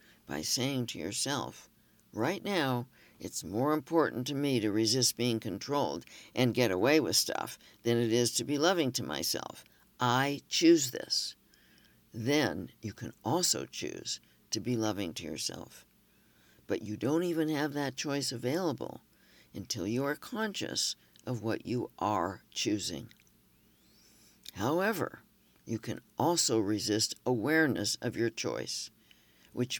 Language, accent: English, American